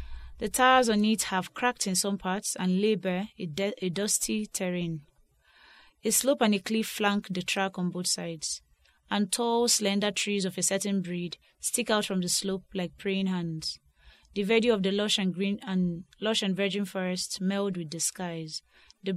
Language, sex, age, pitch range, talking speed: English, female, 20-39, 180-210 Hz, 190 wpm